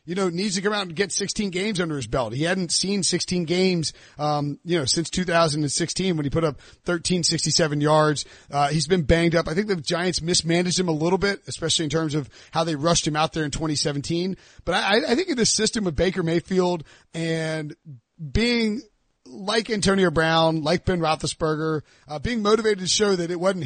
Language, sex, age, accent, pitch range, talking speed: English, male, 30-49, American, 155-185 Hz, 220 wpm